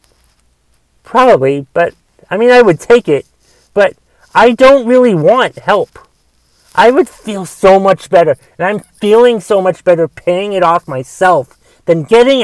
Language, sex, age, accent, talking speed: English, male, 40-59, American, 155 wpm